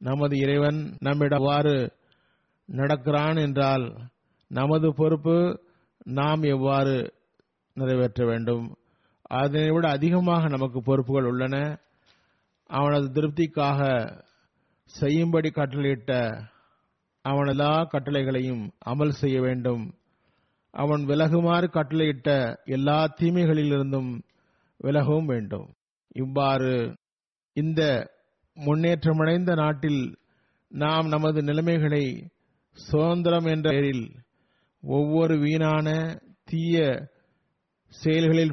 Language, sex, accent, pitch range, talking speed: Tamil, male, native, 135-160 Hz, 75 wpm